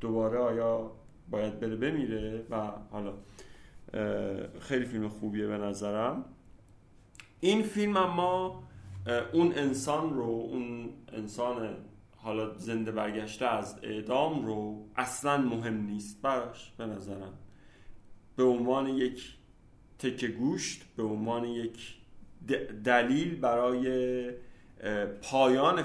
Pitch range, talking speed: 110-130 Hz, 100 wpm